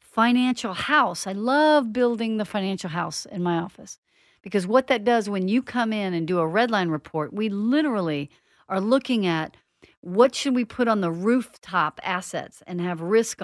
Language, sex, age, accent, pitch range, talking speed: English, female, 50-69, American, 175-240 Hz, 180 wpm